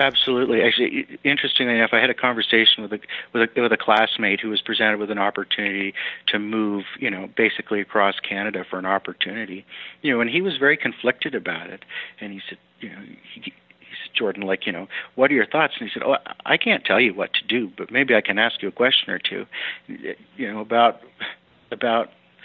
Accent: American